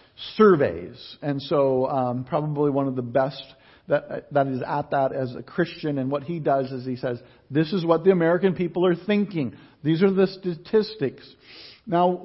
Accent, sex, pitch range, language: American, male, 135-185 Hz, English